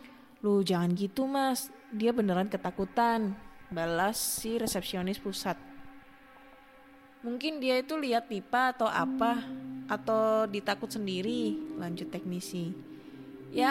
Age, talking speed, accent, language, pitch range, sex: 20-39, 105 wpm, native, Indonesian, 170-245 Hz, female